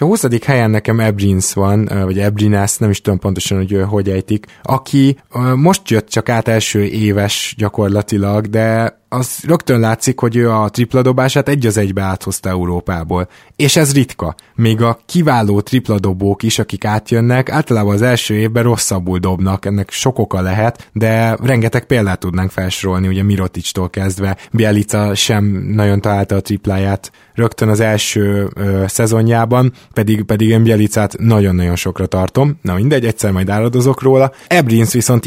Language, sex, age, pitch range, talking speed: Hungarian, male, 20-39, 100-120 Hz, 155 wpm